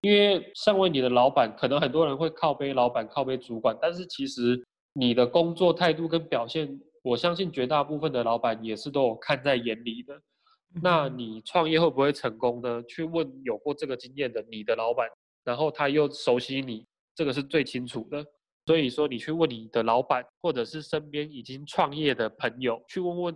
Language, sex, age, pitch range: Chinese, male, 20-39, 120-160 Hz